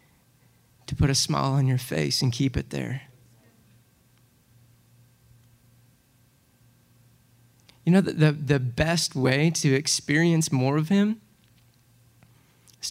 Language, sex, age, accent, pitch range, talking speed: English, male, 20-39, American, 135-205 Hz, 110 wpm